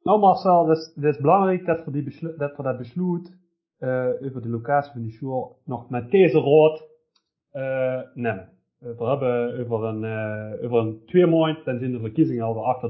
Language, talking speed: Dutch, 195 wpm